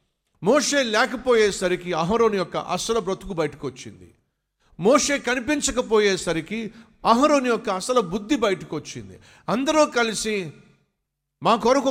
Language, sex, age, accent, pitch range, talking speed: Telugu, male, 50-69, native, 150-220 Hz, 90 wpm